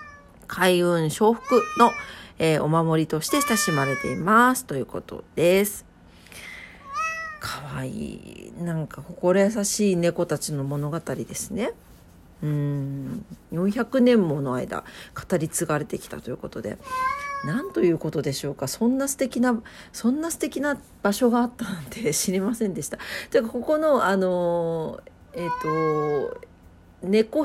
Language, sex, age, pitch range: Japanese, female, 40-59, 165-265 Hz